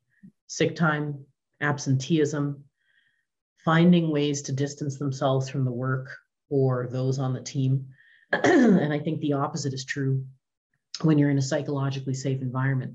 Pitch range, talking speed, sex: 135-160 Hz, 140 wpm, female